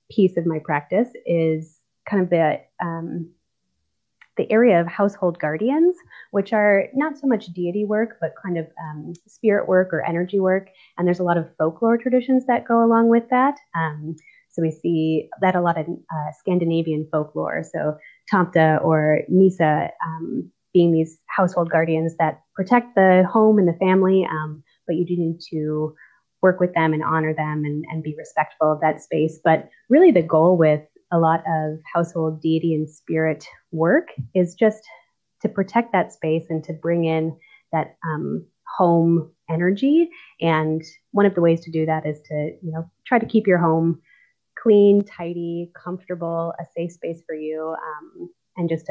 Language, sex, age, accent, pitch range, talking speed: English, female, 20-39, American, 160-190 Hz, 175 wpm